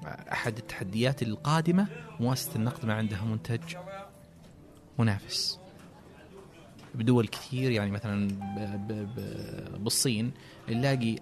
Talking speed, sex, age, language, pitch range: 80 wpm, male, 30-49, Arabic, 110-150 Hz